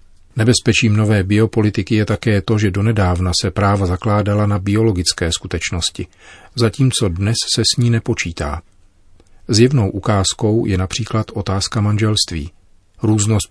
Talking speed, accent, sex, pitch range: 120 wpm, native, male, 90-110 Hz